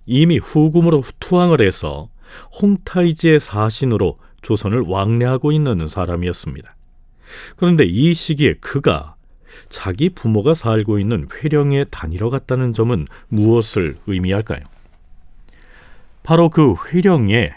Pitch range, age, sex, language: 95-150 Hz, 40-59, male, Korean